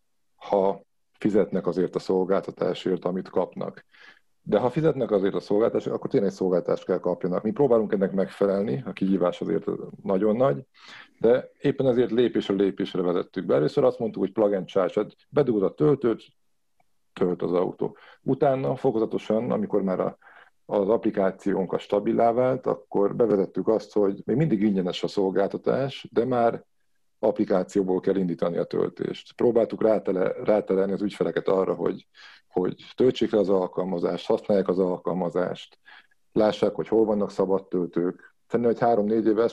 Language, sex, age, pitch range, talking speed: Hungarian, male, 50-69, 95-110 Hz, 145 wpm